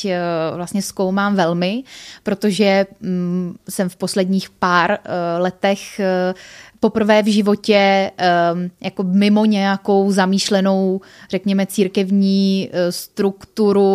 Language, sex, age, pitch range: Czech, female, 20-39, 185-220 Hz